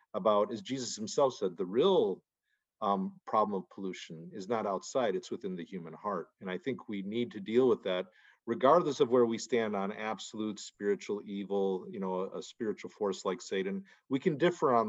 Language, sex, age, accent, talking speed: English, male, 50-69, American, 200 wpm